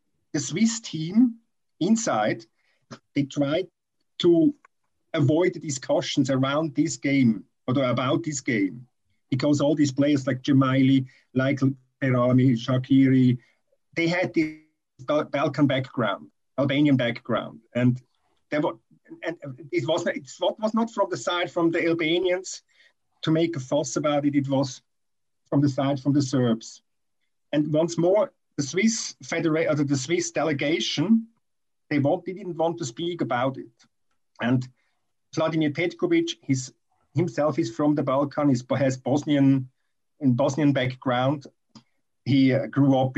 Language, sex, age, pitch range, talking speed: English, male, 50-69, 130-165 Hz, 130 wpm